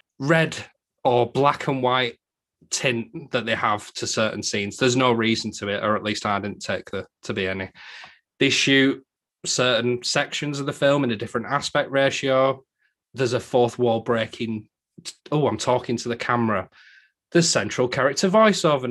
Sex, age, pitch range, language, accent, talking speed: male, 20-39, 110-135 Hz, English, British, 170 wpm